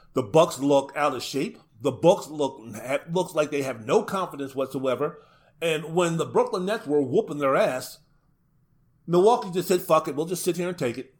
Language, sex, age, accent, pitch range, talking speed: English, male, 40-59, American, 140-170 Hz, 205 wpm